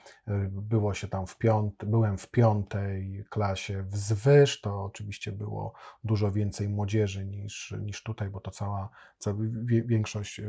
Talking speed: 145 wpm